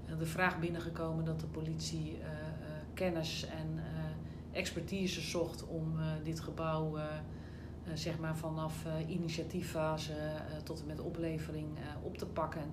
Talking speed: 150 wpm